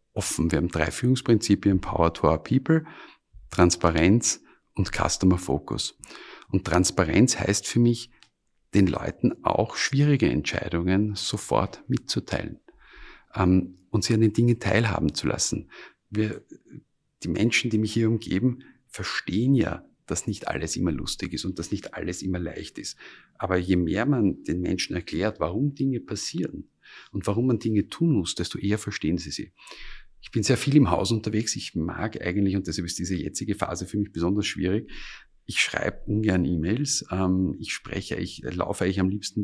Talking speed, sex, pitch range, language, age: 160 wpm, male, 90-110 Hz, German, 50-69